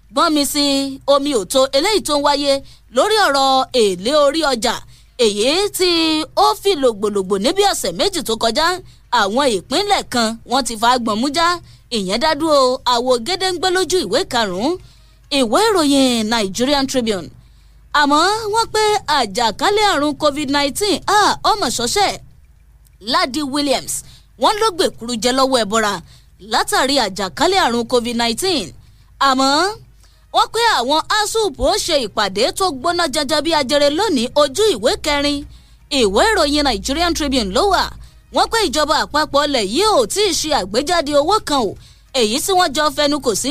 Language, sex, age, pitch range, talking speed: English, female, 20-39, 260-365 Hz, 140 wpm